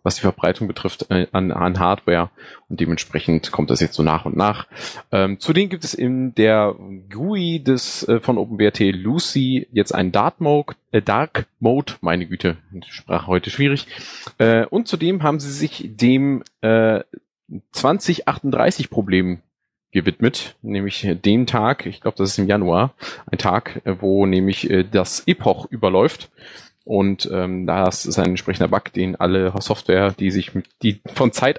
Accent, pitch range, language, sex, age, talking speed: German, 90-120 Hz, German, male, 30-49, 155 wpm